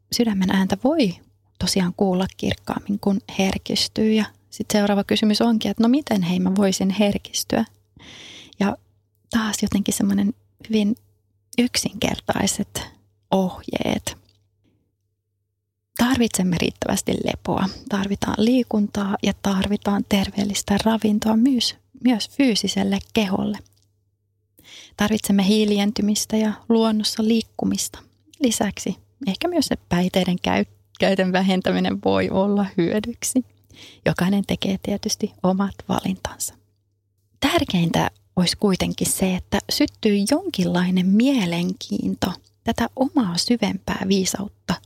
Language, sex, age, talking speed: Finnish, female, 30-49, 100 wpm